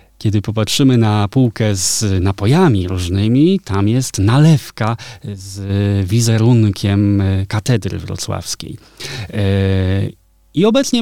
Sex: male